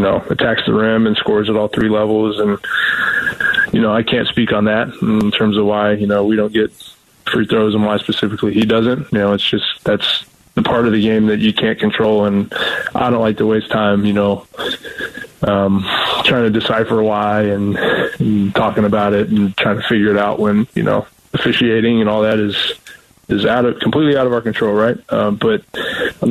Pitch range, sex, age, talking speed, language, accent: 105-115 Hz, male, 20-39, 215 wpm, English, American